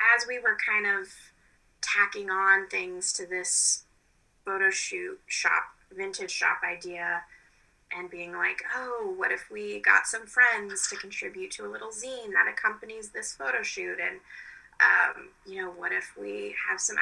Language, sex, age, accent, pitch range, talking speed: English, female, 20-39, American, 175-275 Hz, 160 wpm